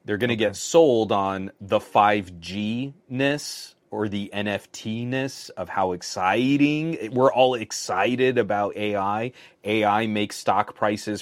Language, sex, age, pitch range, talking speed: English, male, 30-49, 95-120 Hz, 125 wpm